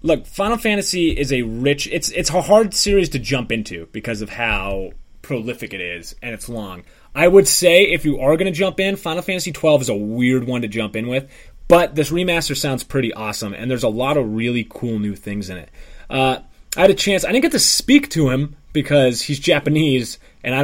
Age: 20-39